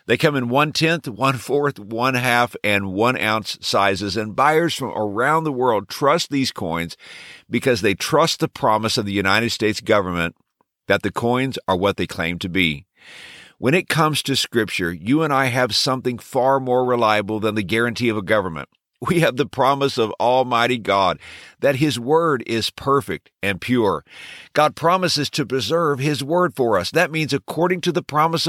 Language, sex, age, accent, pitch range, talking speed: English, male, 50-69, American, 110-145 Hz, 175 wpm